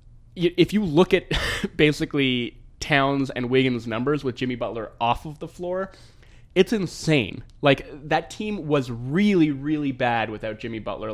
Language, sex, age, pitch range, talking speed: English, male, 20-39, 115-150 Hz, 150 wpm